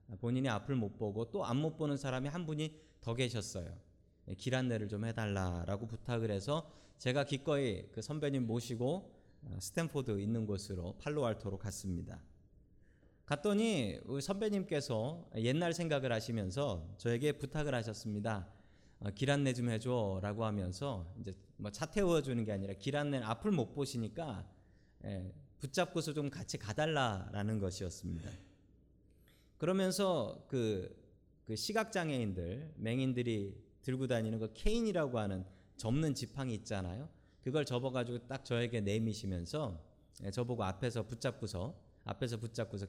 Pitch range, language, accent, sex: 100-140 Hz, Korean, native, male